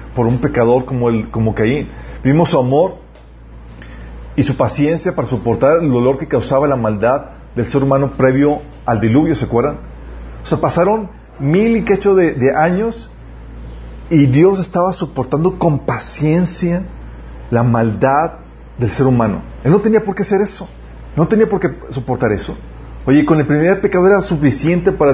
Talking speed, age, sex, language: 165 wpm, 40-59, male, Spanish